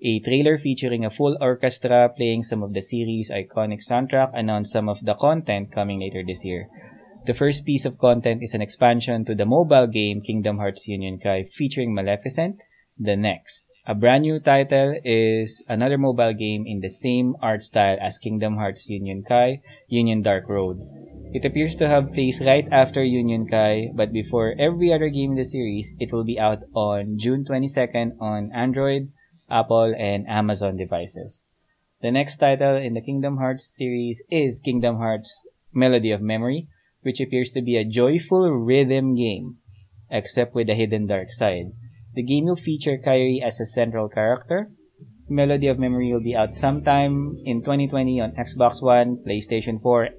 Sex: male